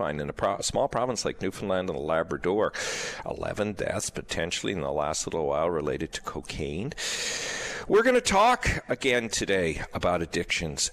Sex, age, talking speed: male, 50-69, 155 wpm